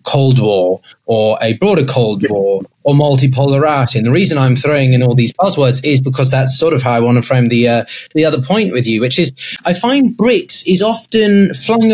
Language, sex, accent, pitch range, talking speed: English, male, British, 120-155 Hz, 215 wpm